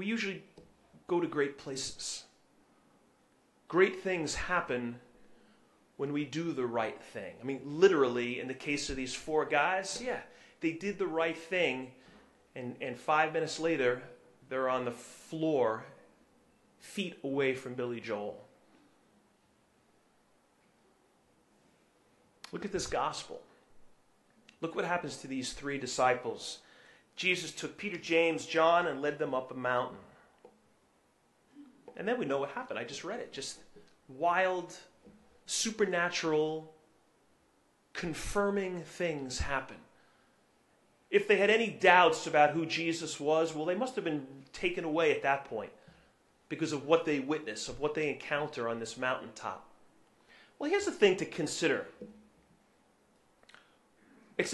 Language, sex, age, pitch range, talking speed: English, male, 30-49, 135-180 Hz, 135 wpm